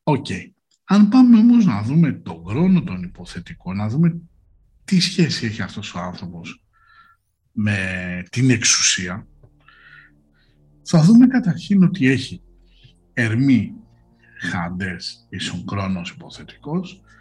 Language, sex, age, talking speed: Greek, male, 60-79, 110 wpm